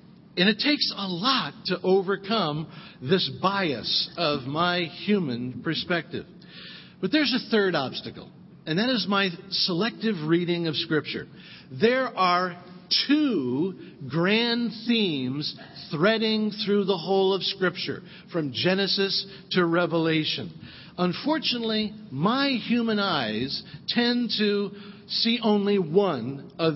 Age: 50-69